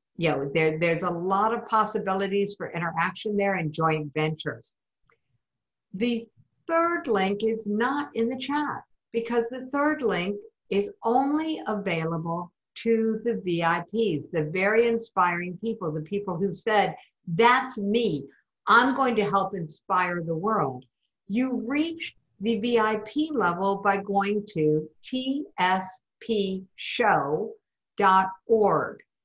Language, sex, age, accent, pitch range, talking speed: English, female, 60-79, American, 175-240 Hz, 115 wpm